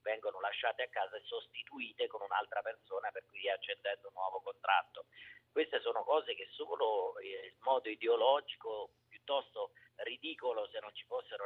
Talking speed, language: 150 wpm, Italian